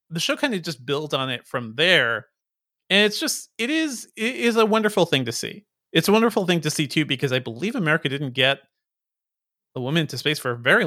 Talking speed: 230 wpm